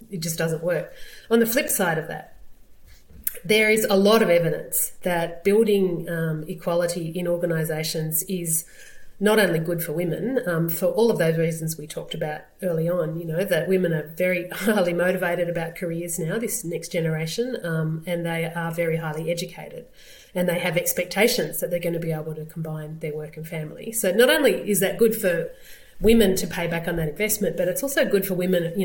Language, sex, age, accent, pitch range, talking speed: English, female, 30-49, Australian, 165-190 Hz, 200 wpm